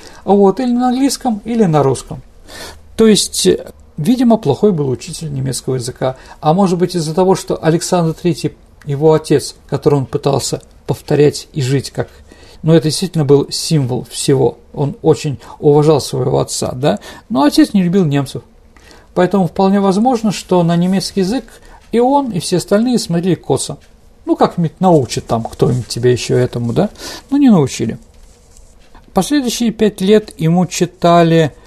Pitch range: 140-190 Hz